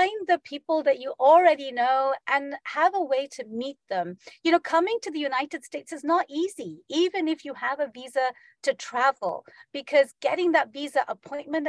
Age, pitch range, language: 40-59, 225-300 Hz, English